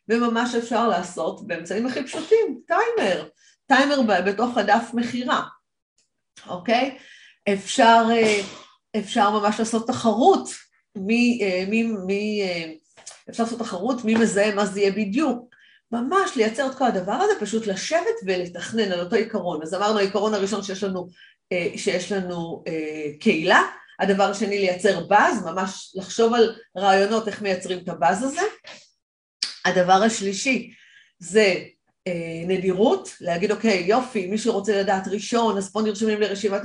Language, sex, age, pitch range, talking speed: Hebrew, female, 40-59, 185-230 Hz, 125 wpm